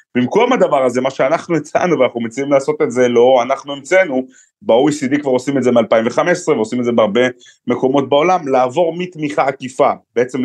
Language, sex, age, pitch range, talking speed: Hebrew, male, 30-49, 125-165 Hz, 170 wpm